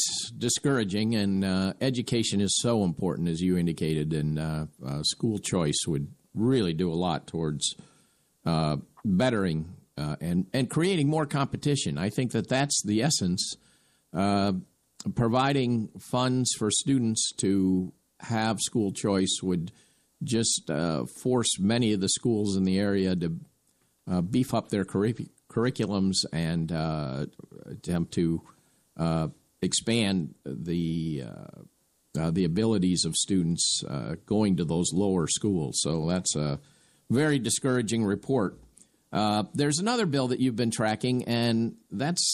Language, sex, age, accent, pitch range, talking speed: English, male, 50-69, American, 90-125 Hz, 135 wpm